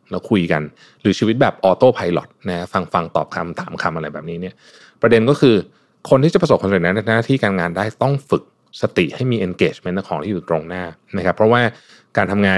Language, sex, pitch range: Thai, male, 90-130 Hz